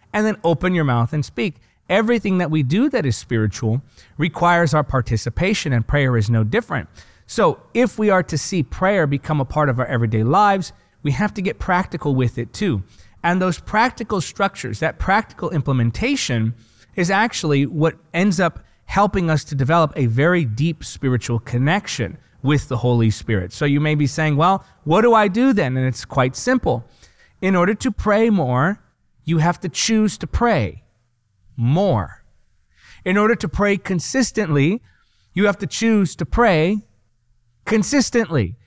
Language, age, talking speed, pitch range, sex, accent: English, 30-49, 170 wpm, 125-195 Hz, male, American